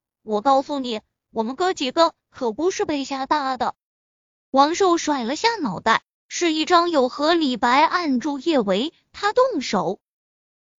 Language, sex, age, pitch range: Chinese, female, 20-39, 230-335 Hz